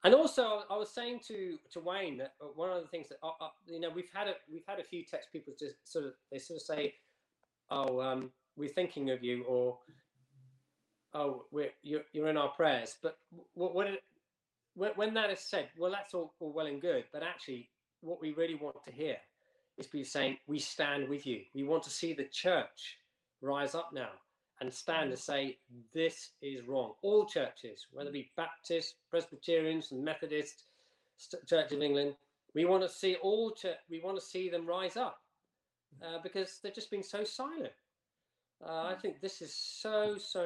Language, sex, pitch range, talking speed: English, male, 135-185 Hz, 195 wpm